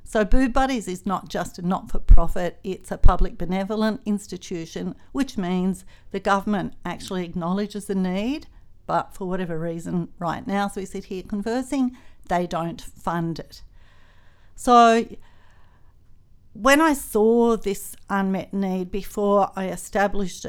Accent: Australian